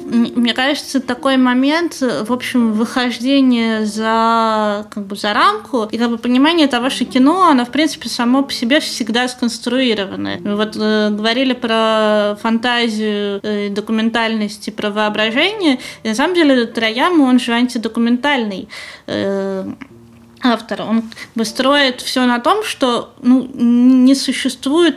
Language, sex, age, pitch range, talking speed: Russian, female, 20-39, 215-265 Hz, 135 wpm